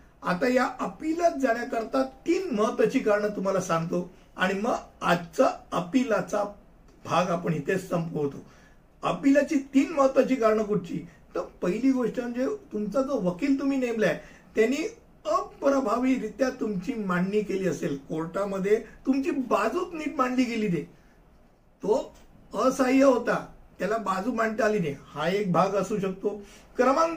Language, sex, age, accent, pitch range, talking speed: Hindi, male, 50-69, native, 195-260 Hz, 115 wpm